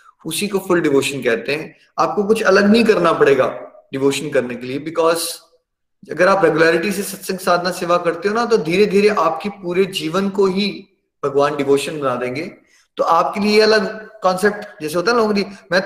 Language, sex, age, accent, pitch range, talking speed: Hindi, male, 30-49, native, 140-205 Hz, 190 wpm